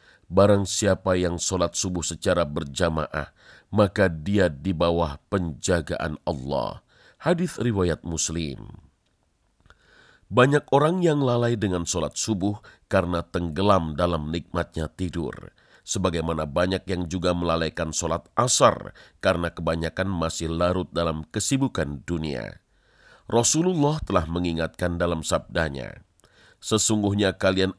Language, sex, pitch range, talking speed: Indonesian, male, 85-100 Hz, 105 wpm